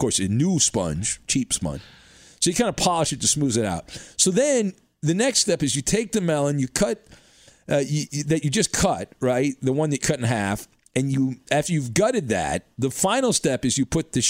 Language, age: English, 40-59